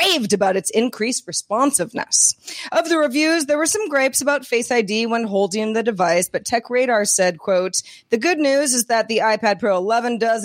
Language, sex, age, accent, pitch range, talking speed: English, female, 30-49, American, 175-245 Hz, 195 wpm